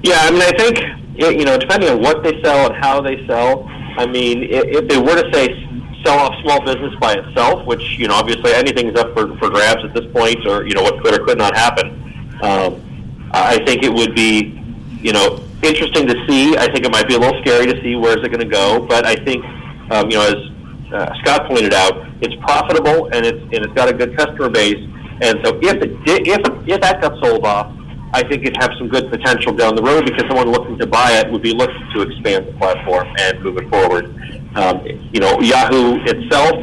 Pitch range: 115-140 Hz